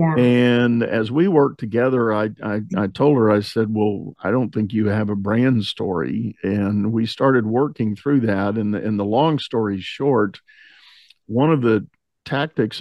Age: 50-69